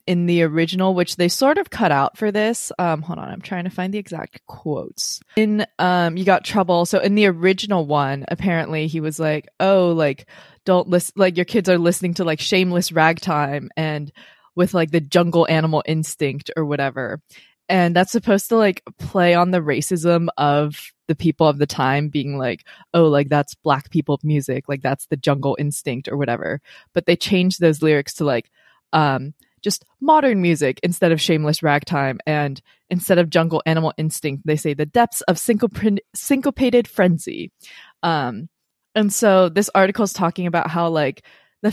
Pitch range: 150-190 Hz